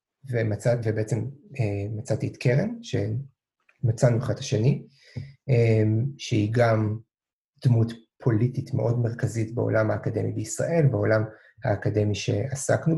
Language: English